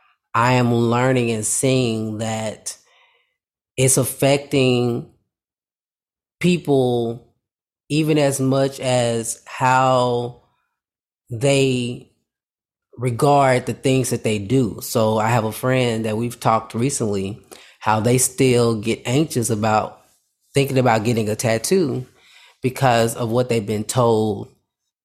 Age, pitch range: 30-49, 110-130 Hz